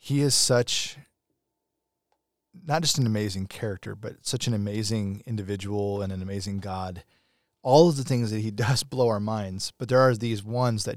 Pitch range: 100-125 Hz